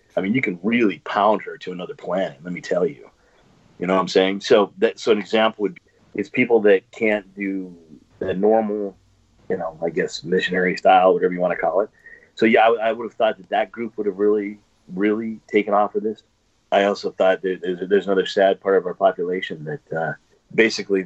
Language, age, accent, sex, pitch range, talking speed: English, 40-59, American, male, 90-110 Hz, 220 wpm